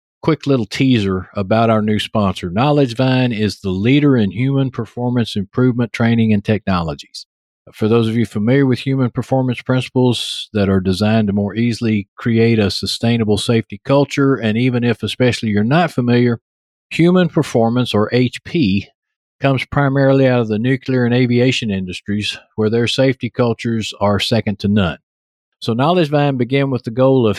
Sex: male